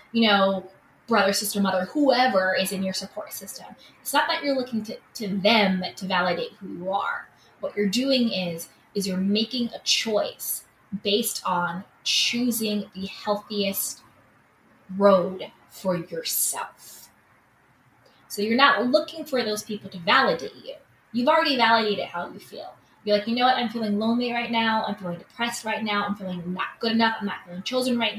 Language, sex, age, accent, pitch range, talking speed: English, female, 20-39, American, 190-230 Hz, 175 wpm